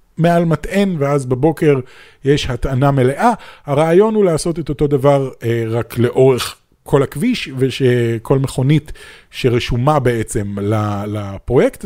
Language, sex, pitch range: Hebrew, male, 125-175 Hz